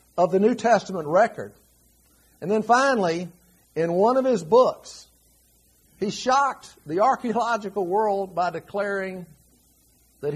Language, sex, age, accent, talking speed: English, male, 50-69, American, 120 wpm